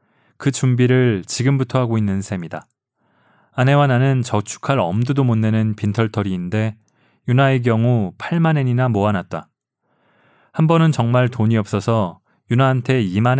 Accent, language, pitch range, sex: native, Korean, 110-135 Hz, male